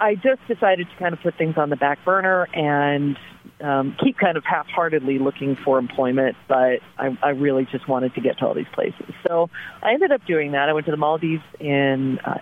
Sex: female